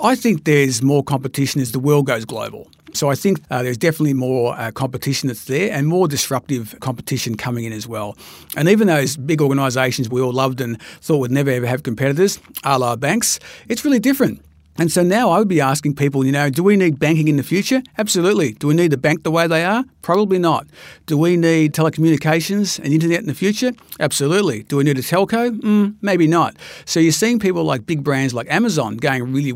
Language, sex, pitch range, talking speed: English, male, 135-170 Hz, 220 wpm